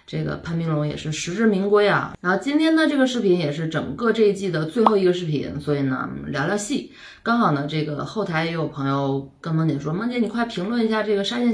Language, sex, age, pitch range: Chinese, female, 20-39, 145-200 Hz